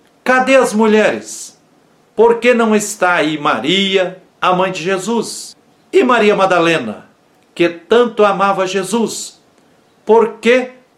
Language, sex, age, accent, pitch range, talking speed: Portuguese, male, 60-79, Brazilian, 165-230 Hz, 120 wpm